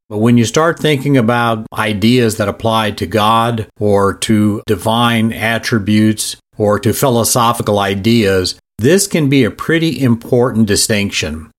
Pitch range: 110-130 Hz